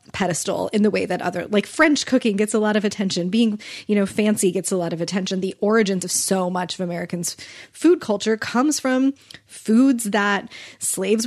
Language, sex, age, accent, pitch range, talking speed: English, female, 20-39, American, 180-220 Hz, 195 wpm